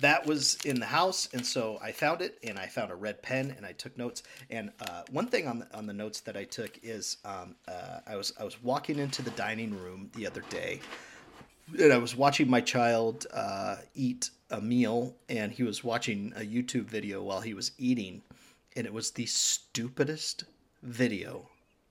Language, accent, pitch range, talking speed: English, American, 120-150 Hz, 205 wpm